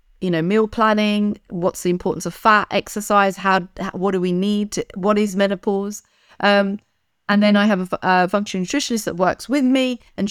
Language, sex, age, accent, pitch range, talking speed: English, female, 40-59, British, 175-230 Hz, 190 wpm